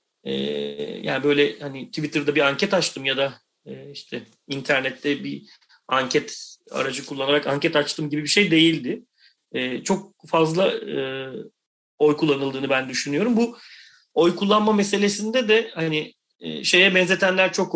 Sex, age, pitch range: male, 40-59, 145-175 Hz